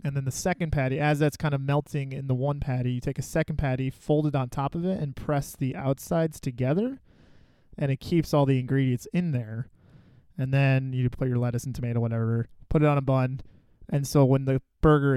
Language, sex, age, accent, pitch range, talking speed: English, male, 20-39, American, 125-145 Hz, 225 wpm